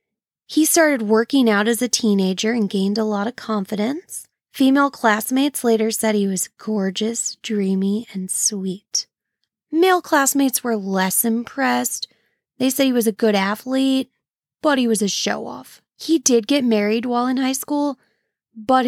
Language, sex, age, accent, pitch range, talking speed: English, female, 20-39, American, 210-260 Hz, 155 wpm